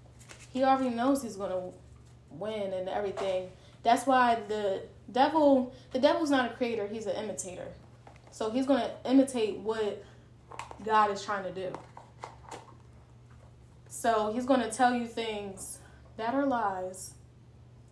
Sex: female